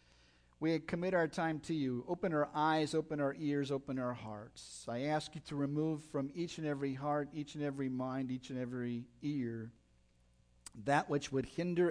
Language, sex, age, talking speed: English, male, 50-69, 185 wpm